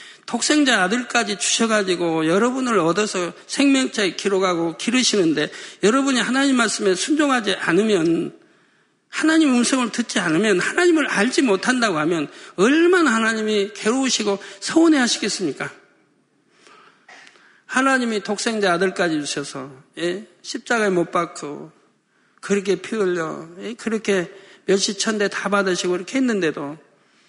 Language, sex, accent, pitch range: Korean, male, native, 195-265 Hz